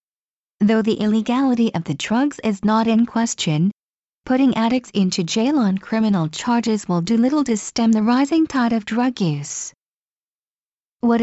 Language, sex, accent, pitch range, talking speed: English, female, American, 190-245 Hz, 155 wpm